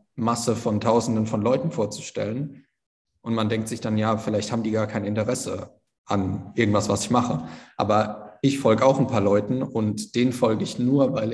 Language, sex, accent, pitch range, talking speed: German, male, German, 105-120 Hz, 190 wpm